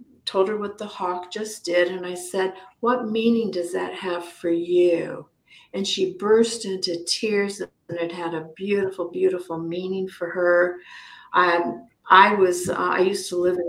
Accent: American